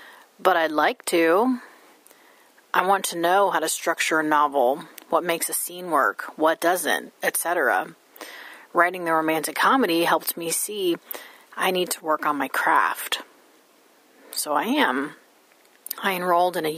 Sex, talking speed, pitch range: female, 150 wpm, 155-190 Hz